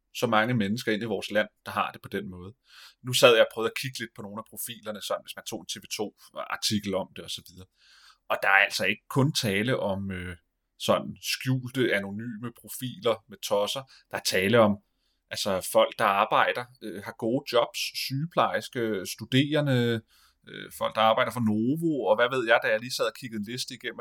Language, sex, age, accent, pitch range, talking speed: Danish, male, 30-49, native, 105-125 Hz, 200 wpm